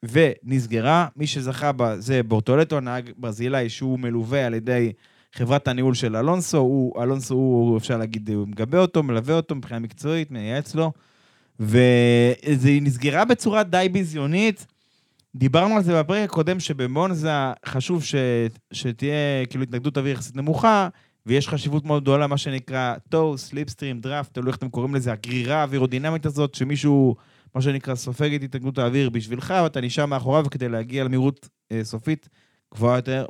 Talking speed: 150 wpm